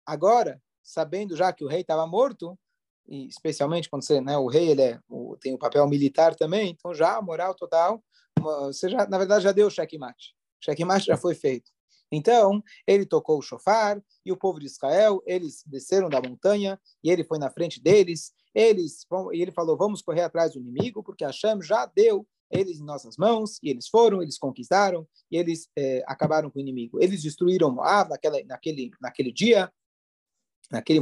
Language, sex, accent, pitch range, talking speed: Portuguese, male, Brazilian, 150-200 Hz, 195 wpm